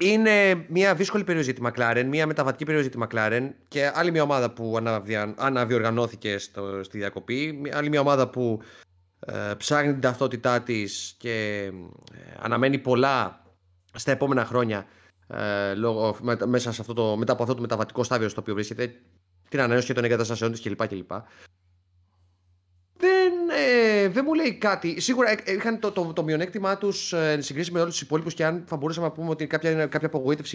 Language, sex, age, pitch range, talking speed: Greek, male, 30-49, 110-170 Hz, 145 wpm